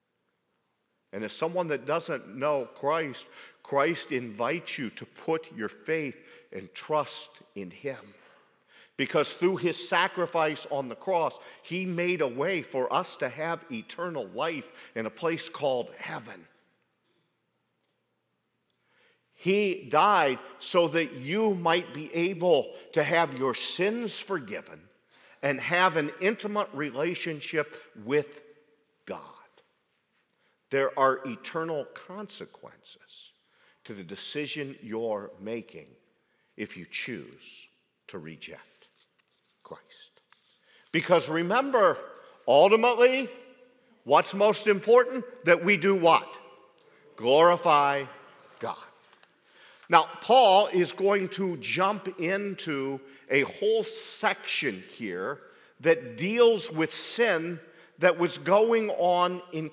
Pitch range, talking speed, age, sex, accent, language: 150-210 Hz, 105 wpm, 50-69, male, American, English